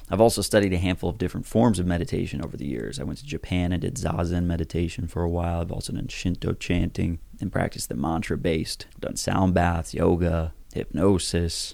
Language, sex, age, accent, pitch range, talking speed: English, male, 30-49, American, 85-95 Hz, 200 wpm